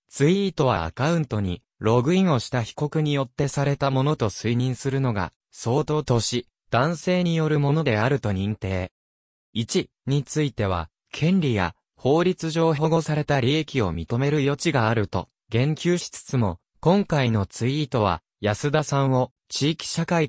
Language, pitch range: Japanese, 110-150 Hz